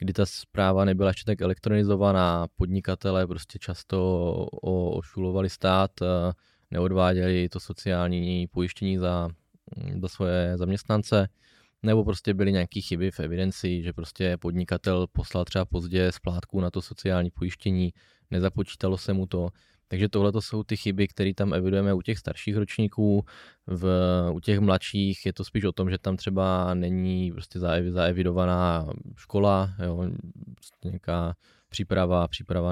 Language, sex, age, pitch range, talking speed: Czech, male, 20-39, 90-100 Hz, 135 wpm